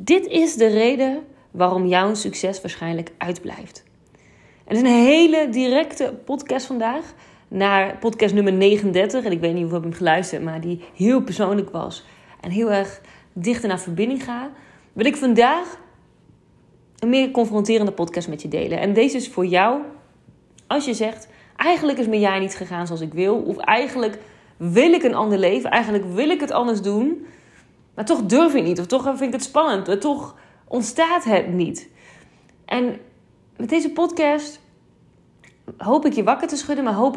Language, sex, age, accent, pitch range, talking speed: Dutch, female, 30-49, Dutch, 195-265 Hz, 175 wpm